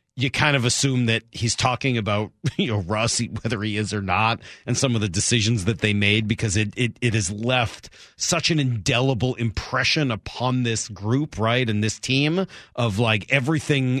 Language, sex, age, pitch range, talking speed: English, male, 40-59, 105-135 Hz, 190 wpm